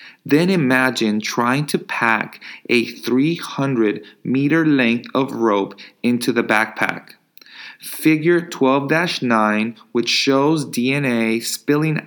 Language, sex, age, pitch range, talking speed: English, male, 30-49, 115-155 Hz, 95 wpm